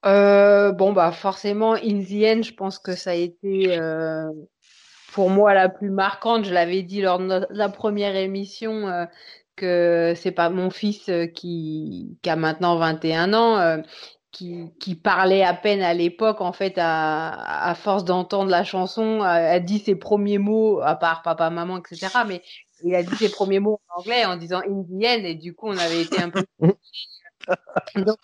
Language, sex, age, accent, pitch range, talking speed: French, female, 30-49, French, 175-210 Hz, 190 wpm